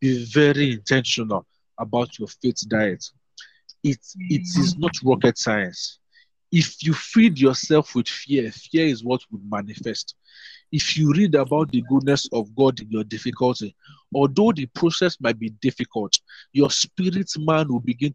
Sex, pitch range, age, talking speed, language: male, 125-170 Hz, 50-69, 150 wpm, English